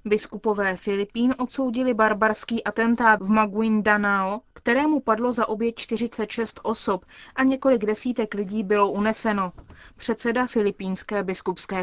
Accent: native